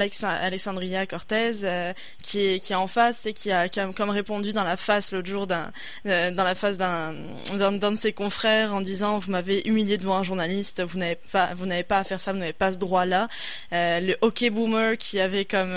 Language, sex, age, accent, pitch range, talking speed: French, female, 20-39, French, 195-235 Hz, 230 wpm